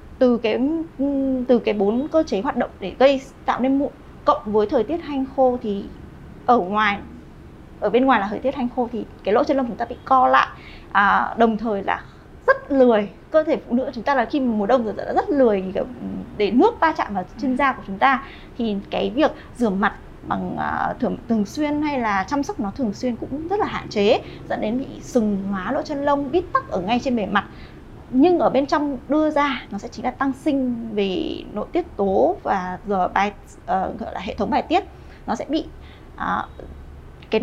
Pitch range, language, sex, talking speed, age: 220-290 Hz, Vietnamese, female, 220 wpm, 20-39